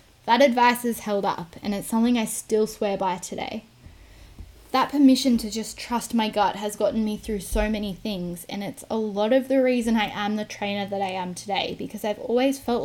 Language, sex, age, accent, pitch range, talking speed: English, female, 10-29, Australian, 190-235 Hz, 215 wpm